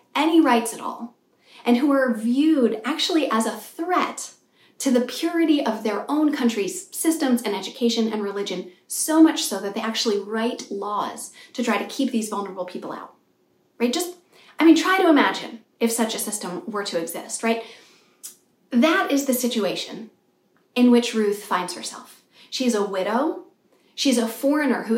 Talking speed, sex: 170 wpm, female